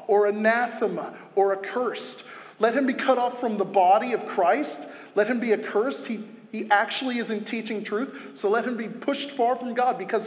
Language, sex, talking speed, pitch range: English, male, 195 wpm, 195-245 Hz